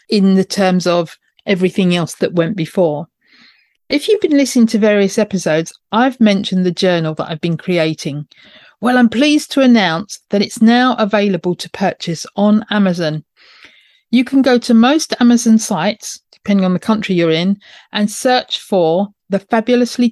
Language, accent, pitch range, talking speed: English, British, 185-250 Hz, 165 wpm